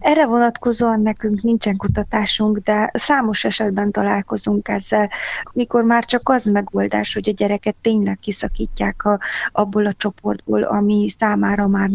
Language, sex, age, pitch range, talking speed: Hungarian, female, 20-39, 200-220 Hz, 135 wpm